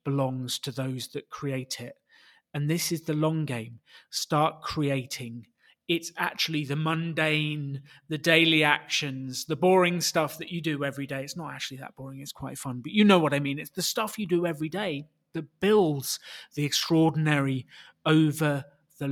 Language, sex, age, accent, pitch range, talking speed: English, male, 30-49, British, 135-165 Hz, 175 wpm